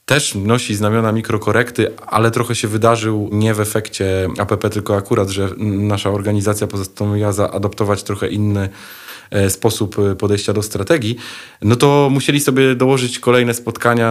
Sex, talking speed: male, 135 wpm